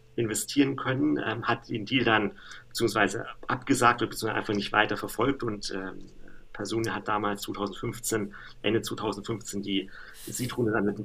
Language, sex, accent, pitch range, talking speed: German, male, German, 100-115 Hz, 150 wpm